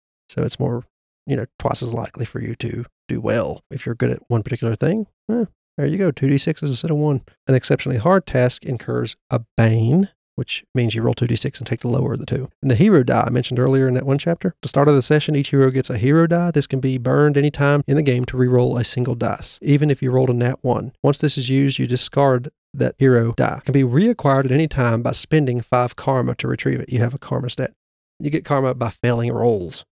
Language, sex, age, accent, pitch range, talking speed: English, male, 40-59, American, 120-145 Hz, 250 wpm